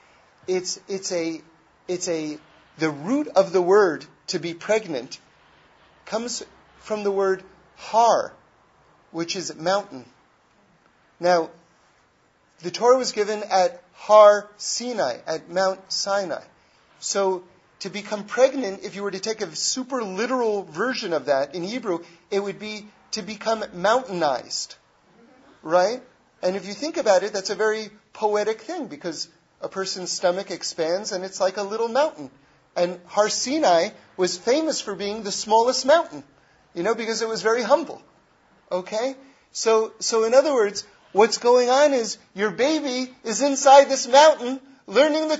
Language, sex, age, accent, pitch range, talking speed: English, male, 40-59, American, 180-250 Hz, 145 wpm